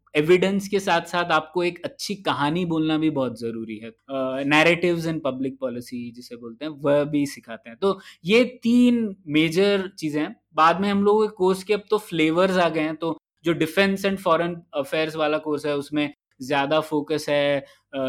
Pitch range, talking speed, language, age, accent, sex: 140-165 Hz, 185 wpm, Hindi, 20-39, native, male